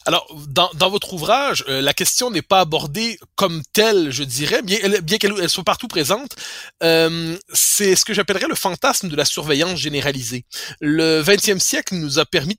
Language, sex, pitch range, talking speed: French, male, 145-195 Hz, 190 wpm